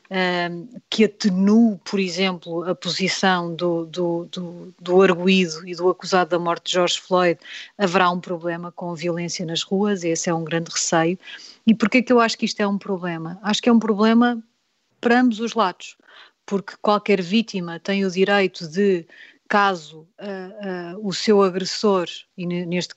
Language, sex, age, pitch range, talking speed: Portuguese, female, 30-49, 180-215 Hz, 165 wpm